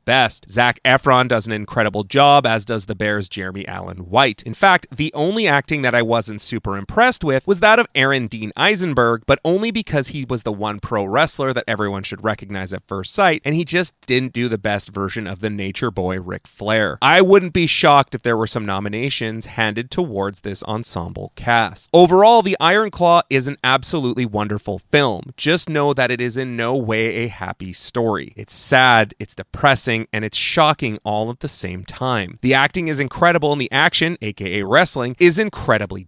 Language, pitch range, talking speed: English, 105-145 Hz, 195 wpm